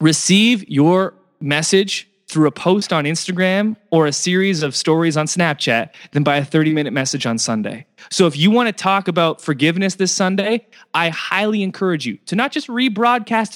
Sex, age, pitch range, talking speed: male, 20-39, 145-185 Hz, 175 wpm